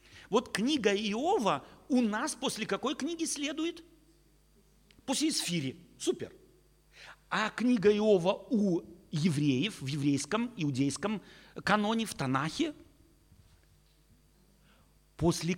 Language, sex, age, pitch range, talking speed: Russian, male, 50-69, 155-245 Hz, 90 wpm